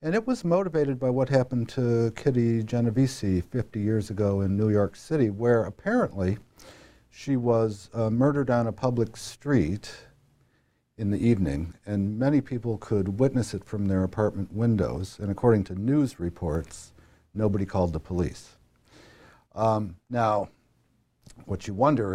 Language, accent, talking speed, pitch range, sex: English, American, 145 wpm, 95-125 Hz, male